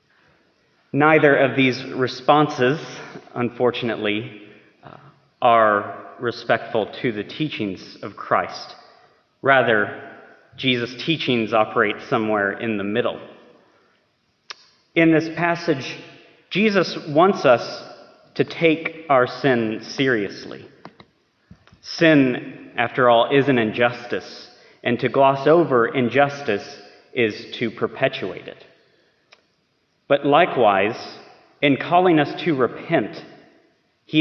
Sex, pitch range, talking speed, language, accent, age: male, 110-155 Hz, 95 wpm, English, American, 30-49